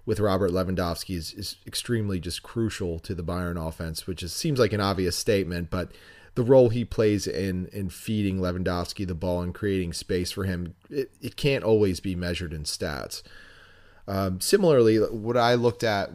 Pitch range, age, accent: 90-105 Hz, 30-49, American